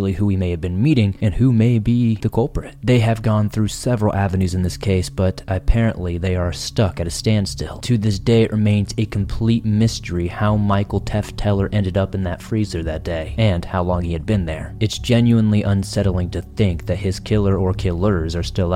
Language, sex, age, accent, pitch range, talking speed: English, male, 30-49, American, 95-115 Hz, 215 wpm